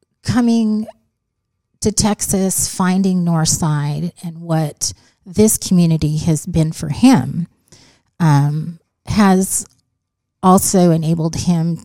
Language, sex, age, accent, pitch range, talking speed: English, female, 30-49, American, 150-175 Hz, 90 wpm